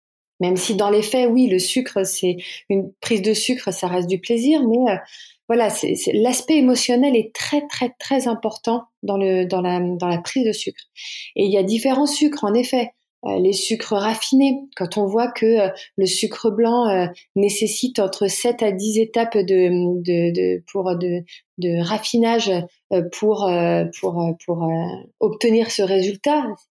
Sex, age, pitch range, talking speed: female, 30-49, 185-235 Hz, 185 wpm